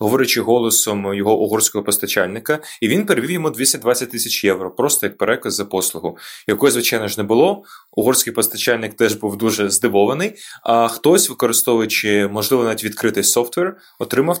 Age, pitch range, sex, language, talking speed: 20-39, 110-130 Hz, male, Ukrainian, 150 wpm